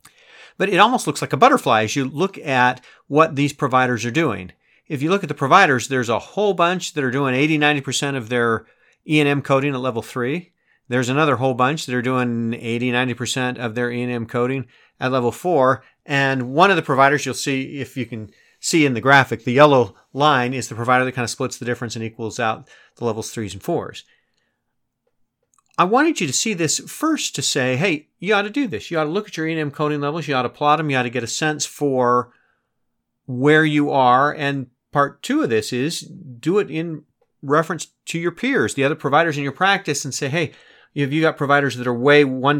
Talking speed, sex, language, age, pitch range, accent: 225 wpm, male, English, 40-59, 125-150 Hz, American